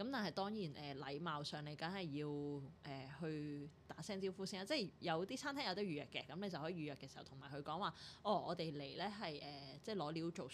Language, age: Chinese, 20-39